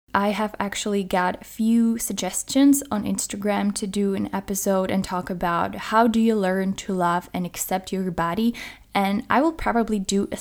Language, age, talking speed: English, 10-29, 185 wpm